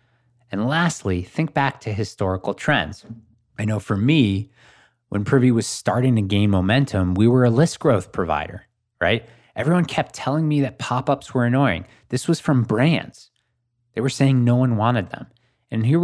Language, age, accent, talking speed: English, 20-39, American, 170 wpm